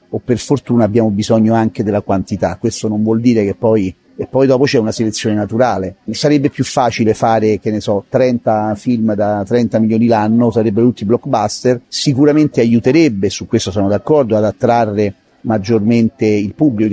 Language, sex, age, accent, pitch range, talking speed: English, male, 40-59, Italian, 105-125 Hz, 170 wpm